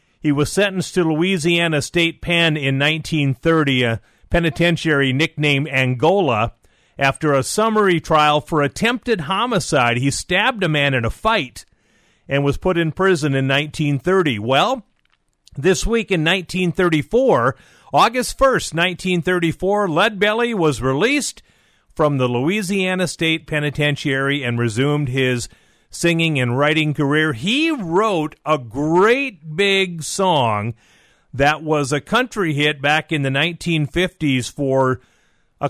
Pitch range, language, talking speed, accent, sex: 140-185 Hz, English, 125 wpm, American, male